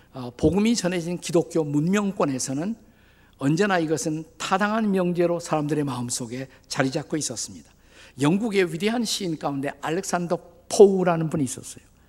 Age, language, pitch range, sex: 50-69, Korean, 125-185 Hz, male